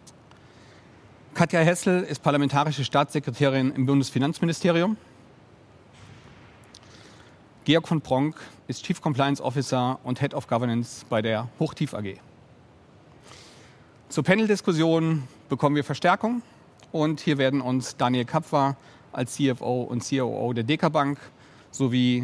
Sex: male